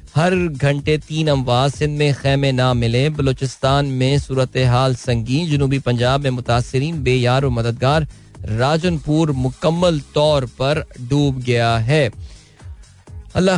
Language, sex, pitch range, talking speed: Hindi, male, 125-145 Hz, 60 wpm